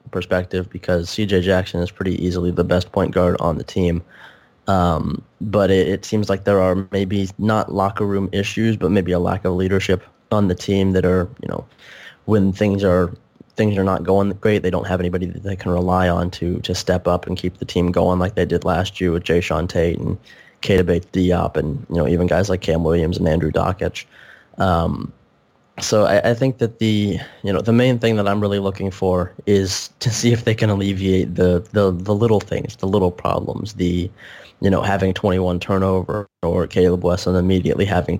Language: English